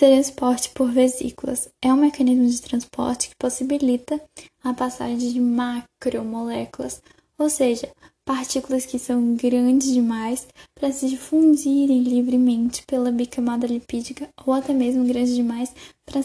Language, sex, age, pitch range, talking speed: Portuguese, female, 10-29, 245-275 Hz, 130 wpm